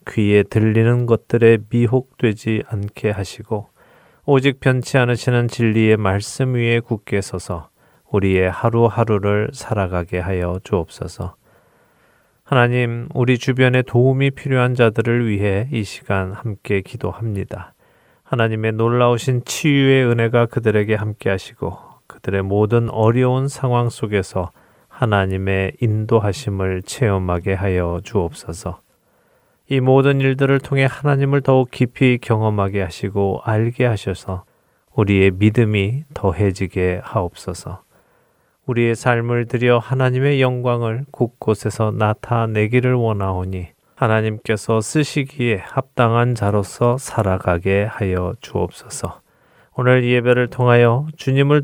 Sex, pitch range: male, 100-125 Hz